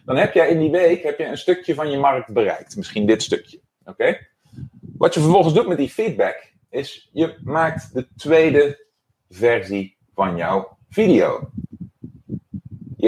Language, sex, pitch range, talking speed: Dutch, male, 115-175 Hz, 155 wpm